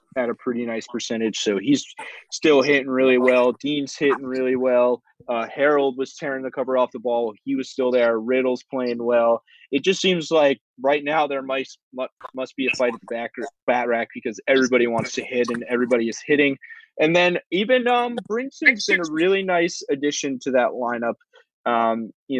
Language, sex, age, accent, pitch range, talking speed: English, male, 20-39, American, 125-155 Hz, 195 wpm